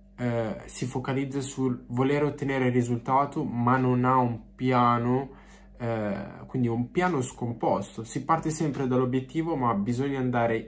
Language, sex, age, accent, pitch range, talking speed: Italian, male, 20-39, native, 120-145 Hz, 130 wpm